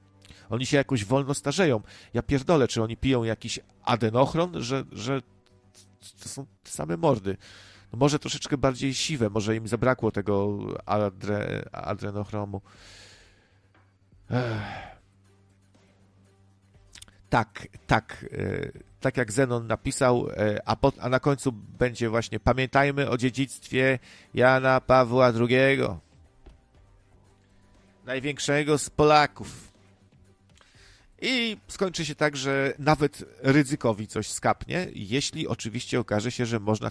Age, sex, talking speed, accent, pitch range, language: 50-69, male, 110 wpm, native, 100-135 Hz, Polish